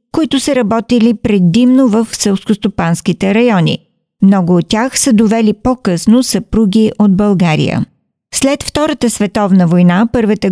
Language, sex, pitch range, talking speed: Bulgarian, female, 195-245 Hz, 120 wpm